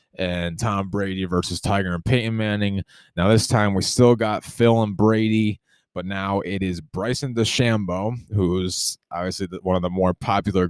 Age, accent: 20-39, American